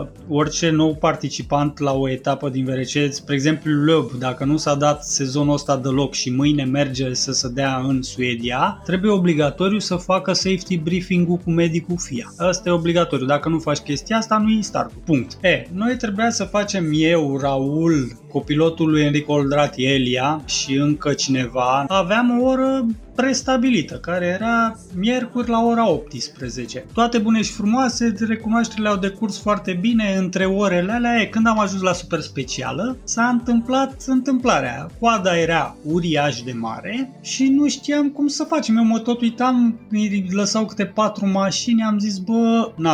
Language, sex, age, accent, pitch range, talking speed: Romanian, male, 20-39, native, 145-220 Hz, 165 wpm